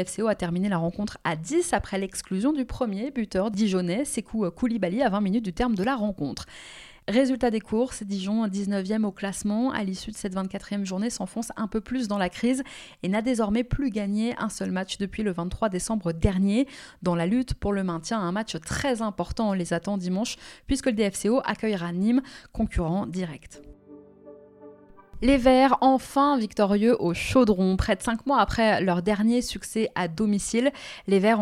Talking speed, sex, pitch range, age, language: 185 wpm, female, 190-240 Hz, 20-39, French